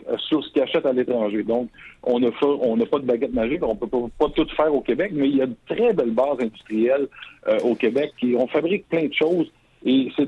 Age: 60-79